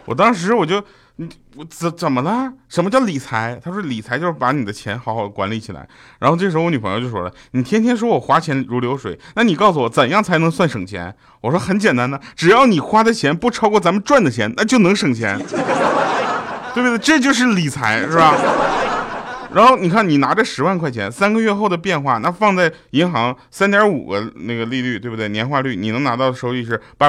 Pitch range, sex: 115-180 Hz, male